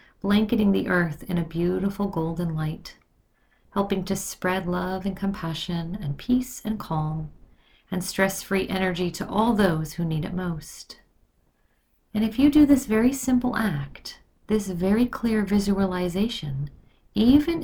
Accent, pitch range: American, 170-210 Hz